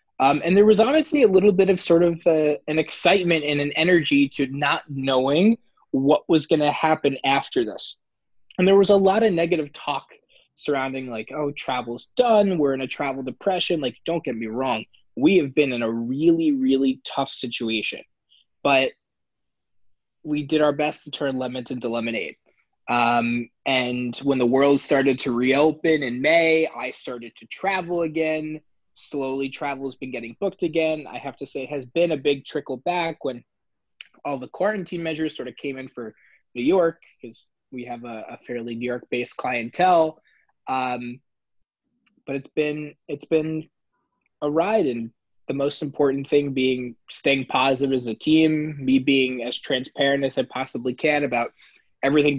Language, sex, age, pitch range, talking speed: English, male, 20-39, 130-160 Hz, 175 wpm